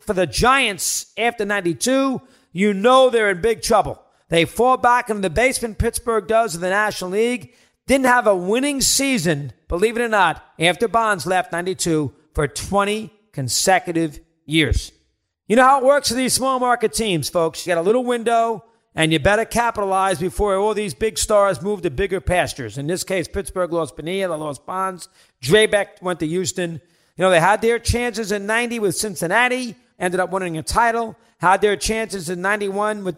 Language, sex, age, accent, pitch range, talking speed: English, male, 40-59, American, 170-220 Hz, 185 wpm